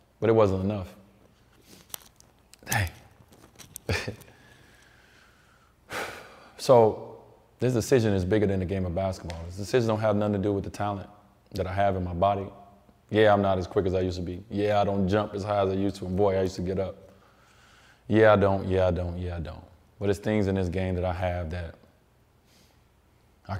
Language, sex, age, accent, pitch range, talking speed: English, male, 20-39, American, 90-100 Hz, 200 wpm